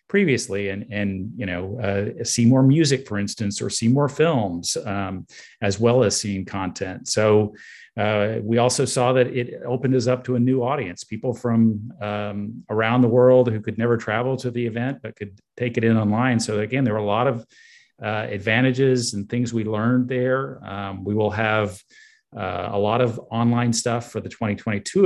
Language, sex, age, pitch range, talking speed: English, male, 40-59, 105-120 Hz, 195 wpm